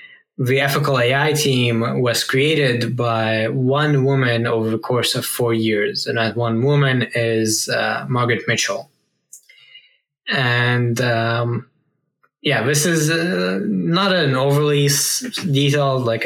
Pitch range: 115-140 Hz